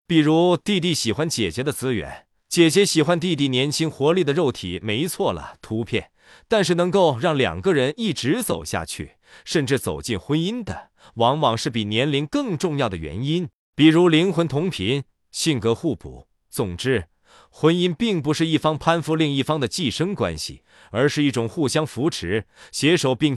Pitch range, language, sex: 115-165 Hz, Chinese, male